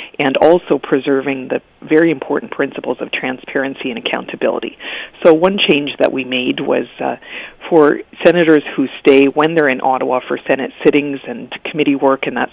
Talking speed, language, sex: 170 wpm, English, female